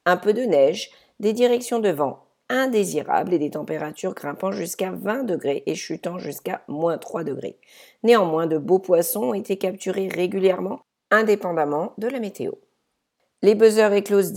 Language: English